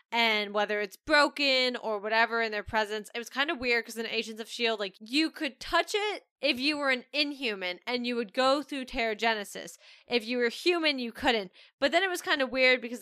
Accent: American